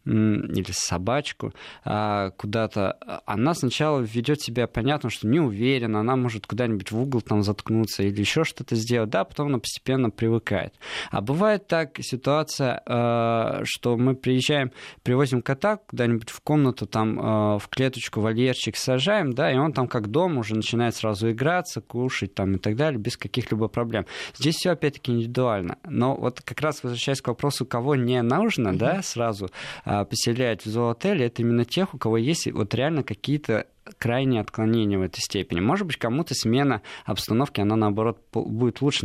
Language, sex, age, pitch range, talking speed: Russian, male, 20-39, 110-135 Hz, 160 wpm